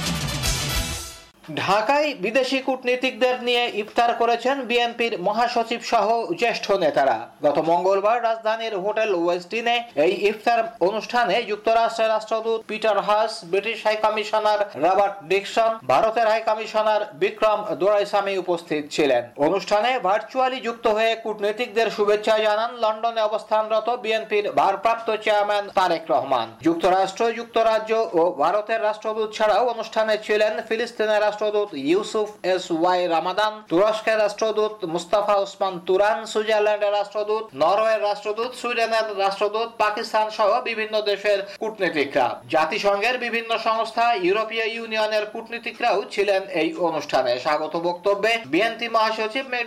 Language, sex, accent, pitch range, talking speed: Bengali, male, native, 205-225 Hz, 45 wpm